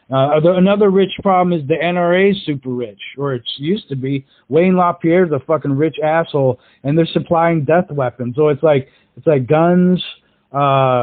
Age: 40-59